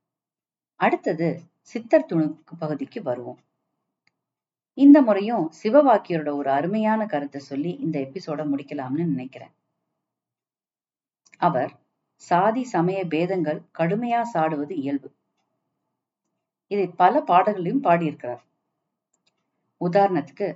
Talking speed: 80 wpm